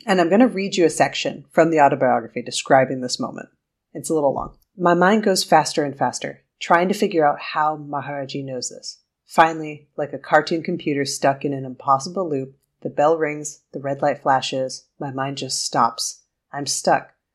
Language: English